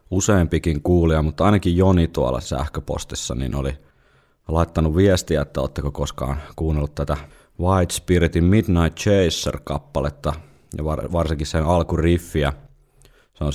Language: Finnish